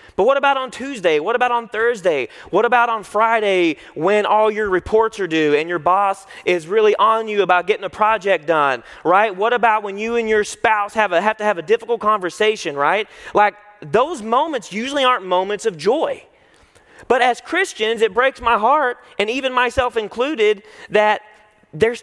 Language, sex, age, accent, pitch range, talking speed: English, male, 30-49, American, 210-280 Hz, 185 wpm